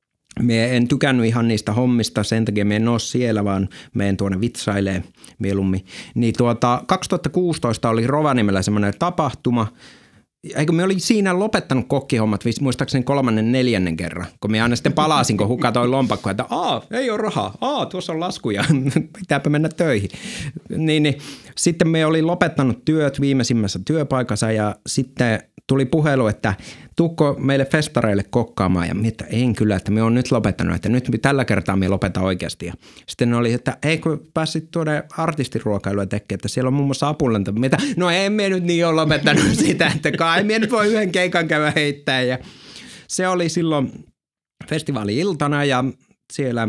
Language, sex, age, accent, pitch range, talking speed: Finnish, male, 30-49, native, 105-150 Hz, 170 wpm